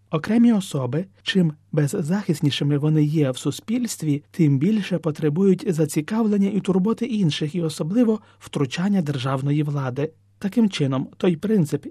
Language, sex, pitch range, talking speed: Ukrainian, male, 145-195 Hz, 120 wpm